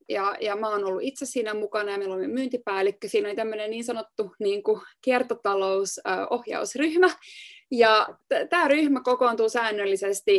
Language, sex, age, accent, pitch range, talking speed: Finnish, female, 20-39, native, 205-280 Hz, 140 wpm